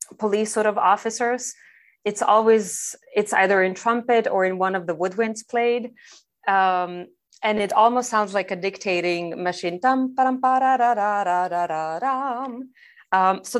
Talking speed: 125 wpm